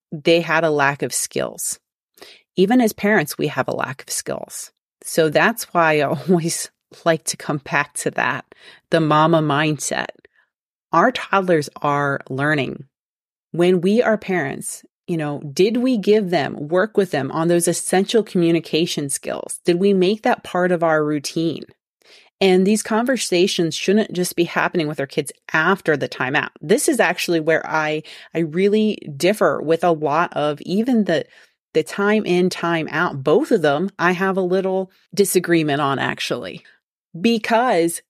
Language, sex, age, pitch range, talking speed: English, female, 30-49, 155-195 Hz, 160 wpm